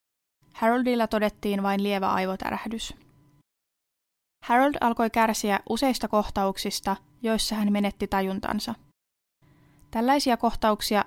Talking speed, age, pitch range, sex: 85 wpm, 20-39, 190-225 Hz, female